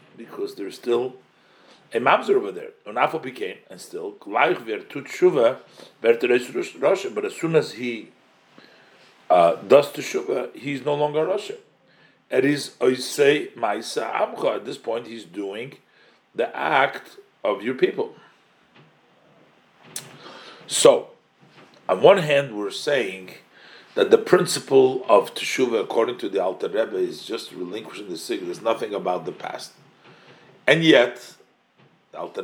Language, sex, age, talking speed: English, male, 40-59, 120 wpm